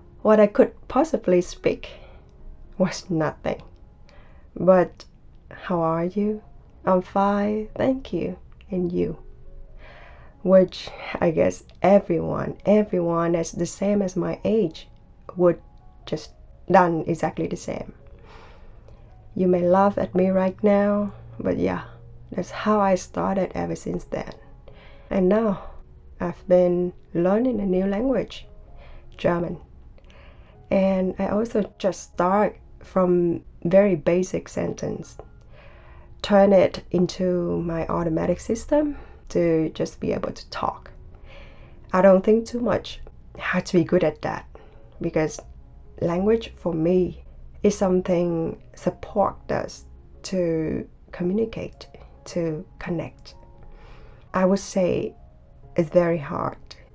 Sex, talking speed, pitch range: female, 115 wpm, 115-195 Hz